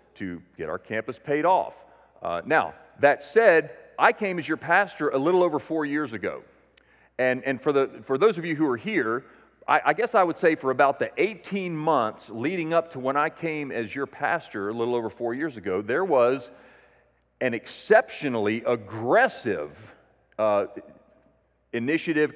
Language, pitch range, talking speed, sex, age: English, 120-165 Hz, 175 wpm, male, 40-59